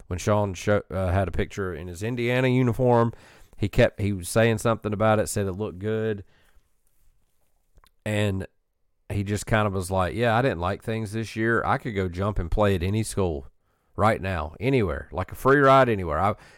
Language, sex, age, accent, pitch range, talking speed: English, male, 40-59, American, 95-115 Hz, 200 wpm